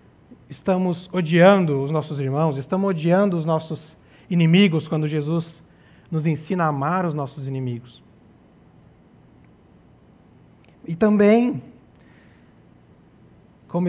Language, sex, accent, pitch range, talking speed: Portuguese, male, Brazilian, 150-185 Hz, 95 wpm